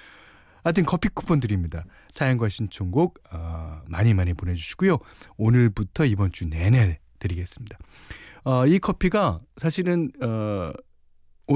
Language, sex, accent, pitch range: Korean, male, native, 95-155 Hz